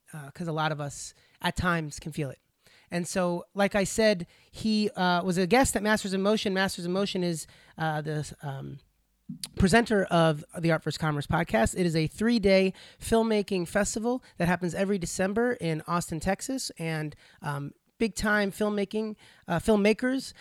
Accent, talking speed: American, 175 wpm